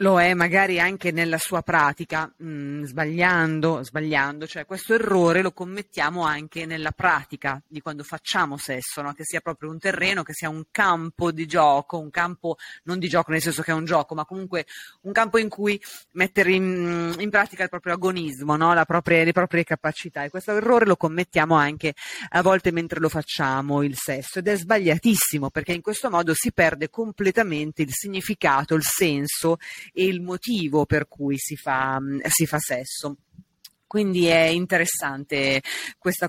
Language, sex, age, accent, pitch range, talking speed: Italian, female, 30-49, native, 155-190 Hz, 175 wpm